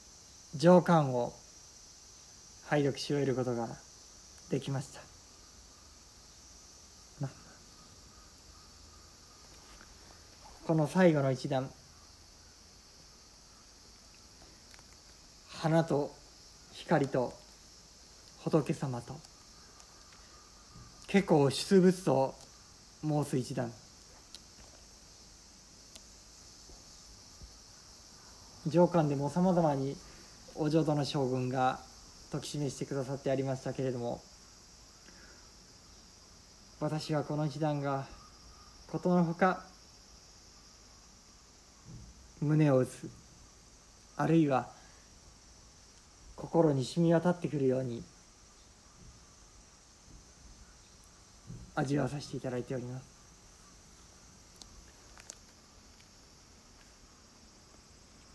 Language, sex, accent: Japanese, male, native